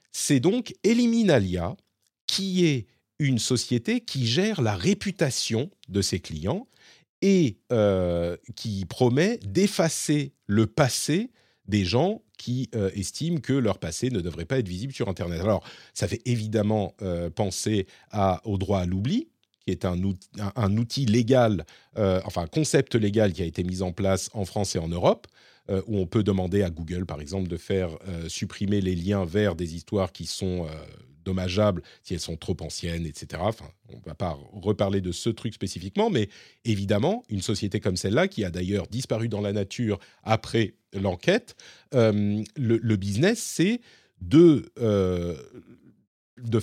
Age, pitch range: 40-59, 95-125 Hz